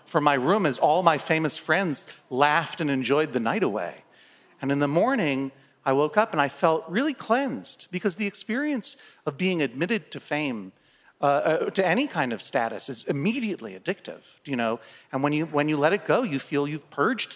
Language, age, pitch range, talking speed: English, 40-59, 145-210 Hz, 195 wpm